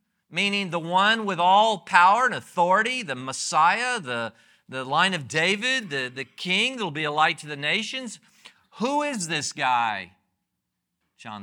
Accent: American